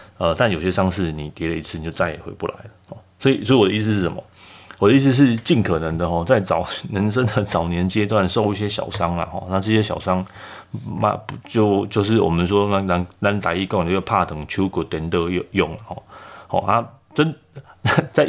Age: 30-49